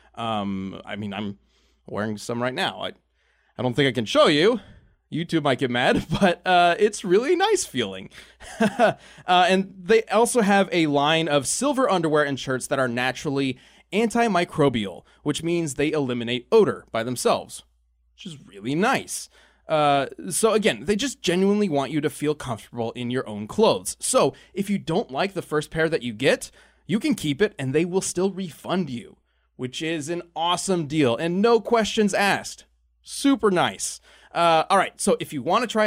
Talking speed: 180 wpm